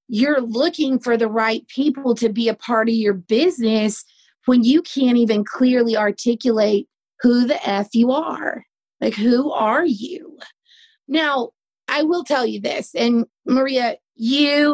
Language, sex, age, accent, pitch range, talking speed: English, female, 30-49, American, 220-260 Hz, 150 wpm